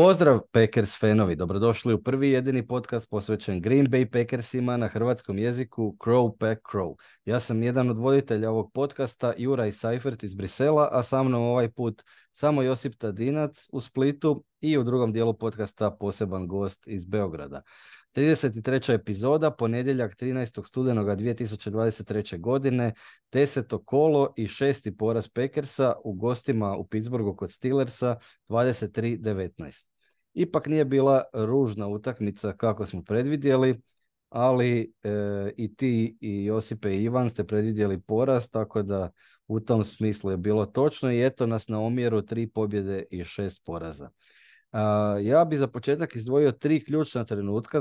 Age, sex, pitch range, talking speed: 30-49, male, 105-130 Hz, 145 wpm